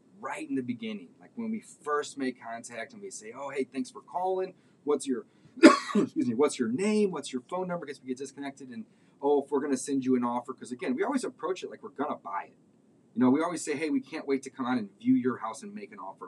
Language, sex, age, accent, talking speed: English, male, 30-49, American, 275 wpm